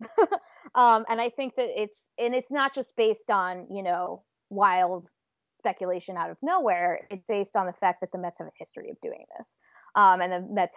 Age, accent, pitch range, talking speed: 20-39, American, 170-200 Hz, 205 wpm